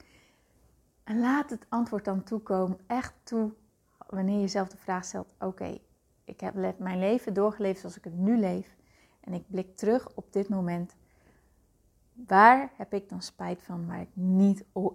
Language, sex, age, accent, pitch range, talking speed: Dutch, female, 30-49, Dutch, 185-220 Hz, 170 wpm